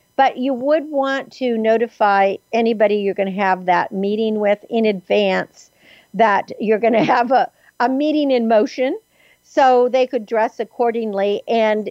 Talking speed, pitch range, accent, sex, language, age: 160 wpm, 185-235 Hz, American, female, English, 50-69